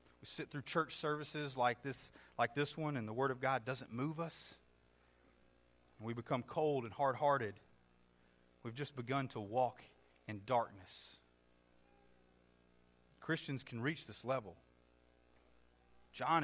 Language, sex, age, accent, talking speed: English, male, 40-59, American, 135 wpm